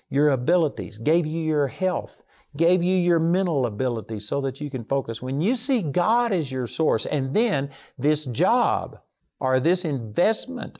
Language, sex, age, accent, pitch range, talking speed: English, male, 50-69, American, 130-190 Hz, 165 wpm